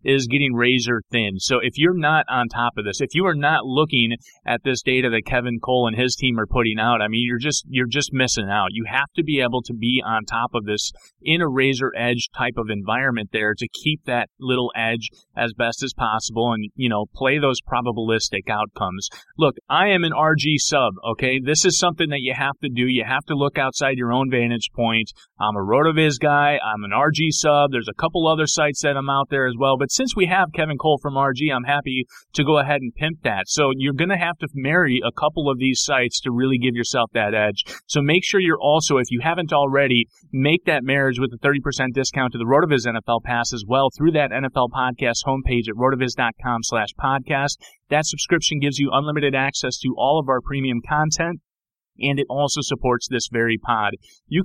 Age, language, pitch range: 30-49, English, 120-150 Hz